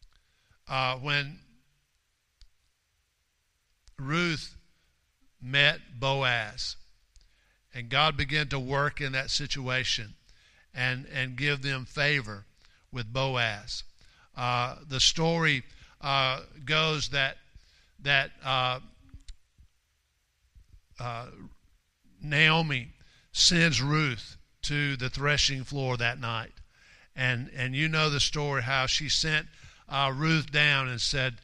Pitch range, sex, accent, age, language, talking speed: 125-145 Hz, male, American, 50-69, English, 100 wpm